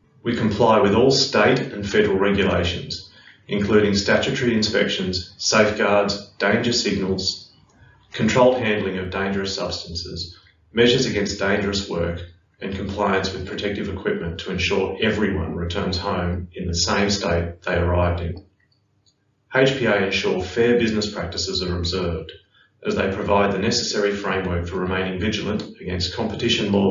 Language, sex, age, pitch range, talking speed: English, male, 30-49, 90-105 Hz, 130 wpm